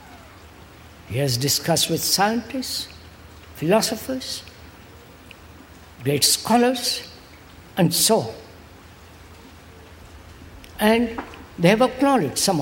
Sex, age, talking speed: female, 60-79, 75 wpm